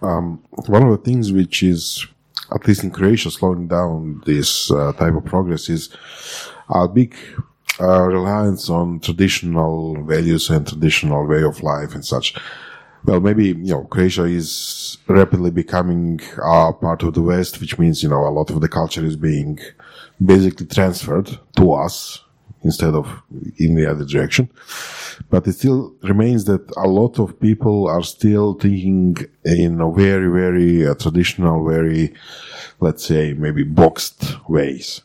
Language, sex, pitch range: Croatian, male, 80-95 Hz